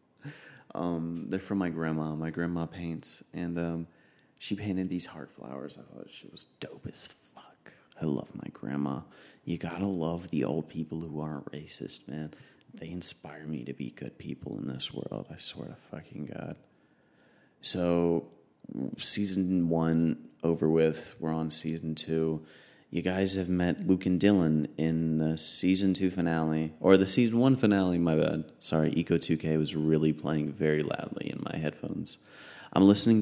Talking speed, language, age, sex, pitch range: 165 wpm, English, 30-49, male, 80-95 Hz